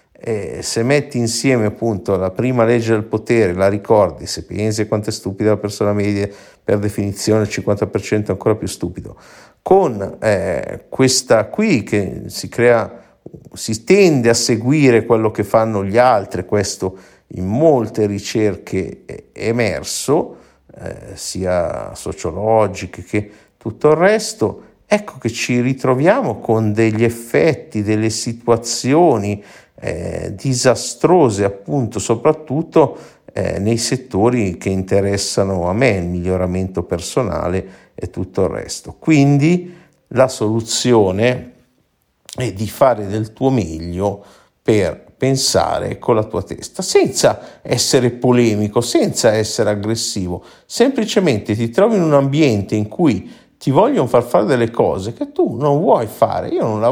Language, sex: Italian, male